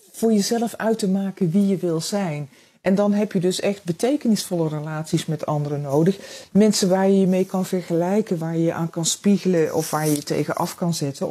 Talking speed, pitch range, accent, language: 220 wpm, 165-205 Hz, Dutch, Dutch